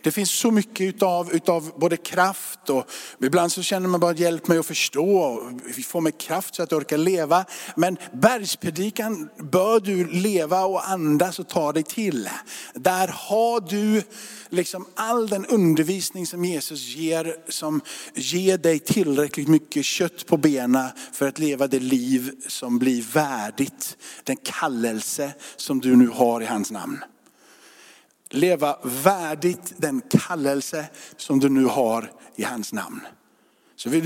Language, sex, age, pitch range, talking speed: Swedish, male, 50-69, 155-210 Hz, 150 wpm